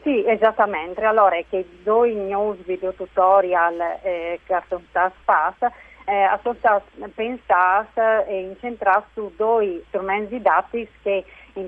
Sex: female